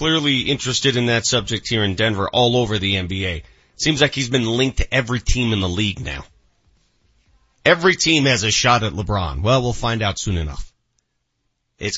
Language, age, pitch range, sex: English, 40-59, 110-135 Hz, male